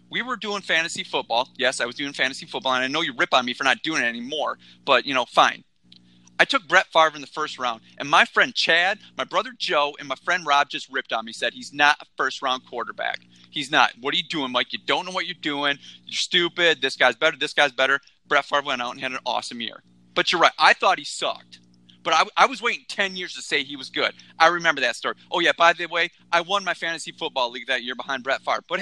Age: 30-49